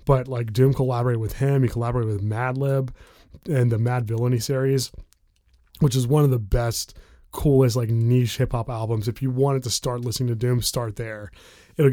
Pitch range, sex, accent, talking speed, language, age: 115-135 Hz, male, American, 195 wpm, English, 20-39